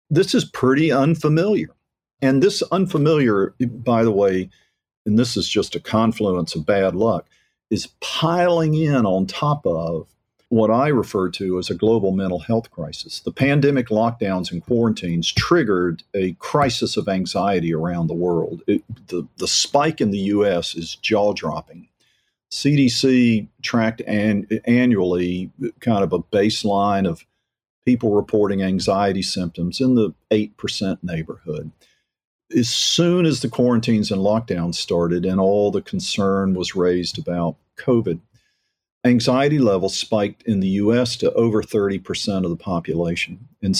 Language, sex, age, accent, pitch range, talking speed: English, male, 50-69, American, 95-125 Hz, 140 wpm